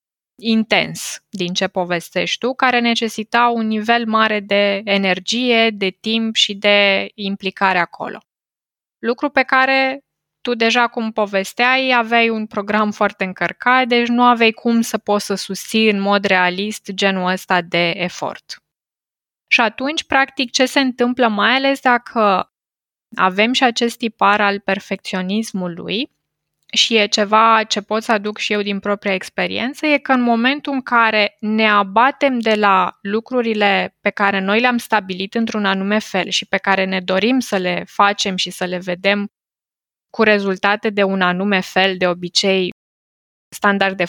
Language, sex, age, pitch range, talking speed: Romanian, female, 20-39, 195-235 Hz, 150 wpm